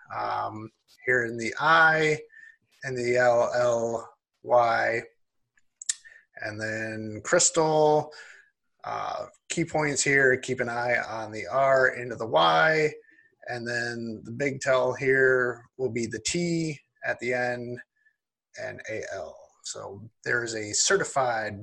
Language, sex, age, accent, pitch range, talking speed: English, male, 30-49, American, 115-155 Hz, 120 wpm